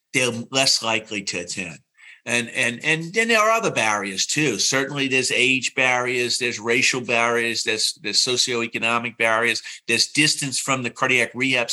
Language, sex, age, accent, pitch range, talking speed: English, male, 50-69, American, 120-160 Hz, 160 wpm